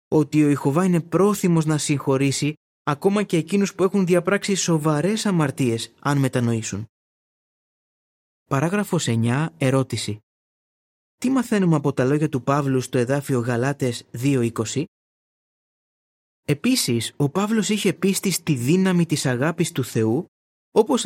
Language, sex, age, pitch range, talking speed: Greek, male, 20-39, 125-180 Hz, 125 wpm